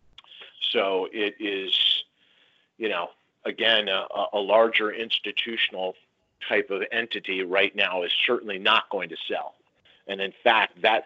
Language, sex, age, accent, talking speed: English, male, 40-59, American, 135 wpm